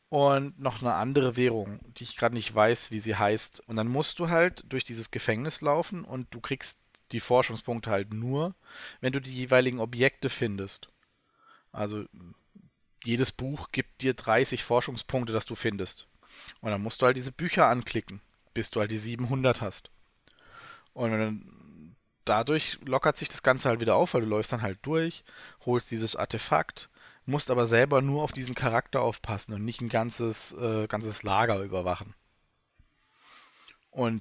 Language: German